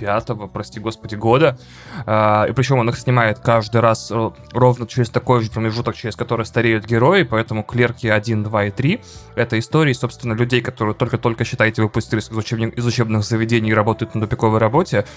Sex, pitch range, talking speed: male, 110-125 Hz, 180 wpm